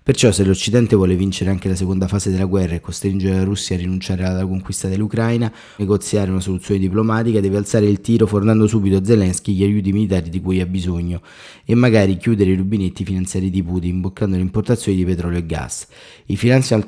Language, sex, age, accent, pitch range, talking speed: Italian, male, 20-39, native, 90-105 Hz, 200 wpm